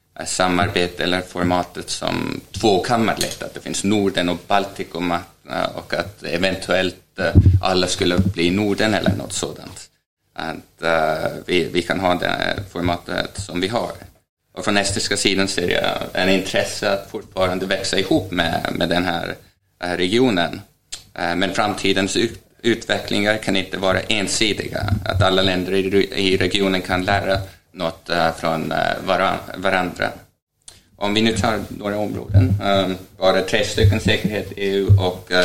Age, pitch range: 20-39, 90-100 Hz